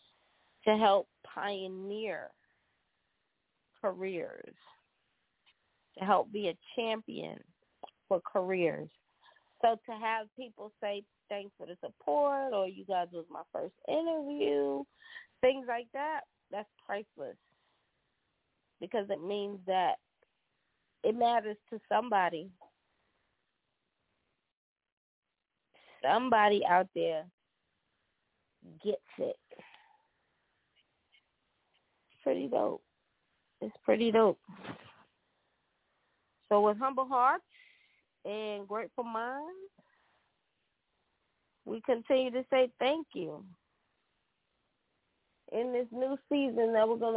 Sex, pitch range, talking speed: female, 200-290 Hz, 90 wpm